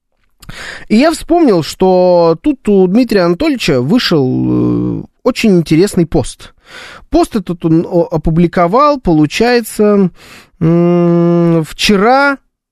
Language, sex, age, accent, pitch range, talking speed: Russian, male, 20-39, native, 155-220 Hz, 85 wpm